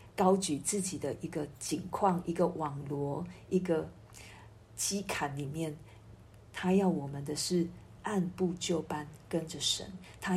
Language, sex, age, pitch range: Chinese, female, 50-69, 150-190 Hz